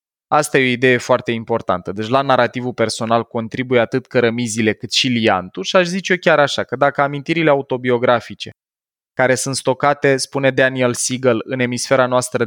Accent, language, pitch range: native, Romanian, 120-155 Hz